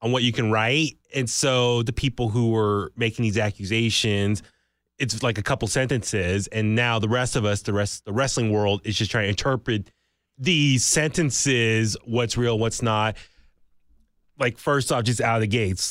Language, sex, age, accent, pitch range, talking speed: English, male, 20-39, American, 105-125 Hz, 185 wpm